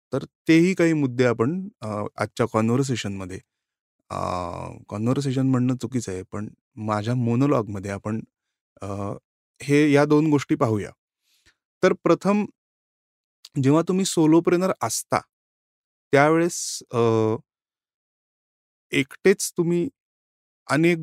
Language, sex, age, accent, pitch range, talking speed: Marathi, male, 30-49, native, 115-160 Hz, 65 wpm